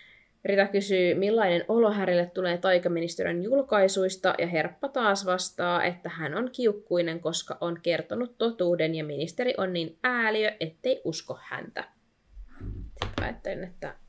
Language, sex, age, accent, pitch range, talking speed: Finnish, female, 20-39, native, 170-200 Hz, 125 wpm